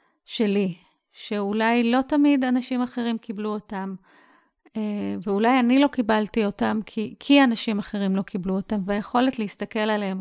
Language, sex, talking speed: English, female, 135 wpm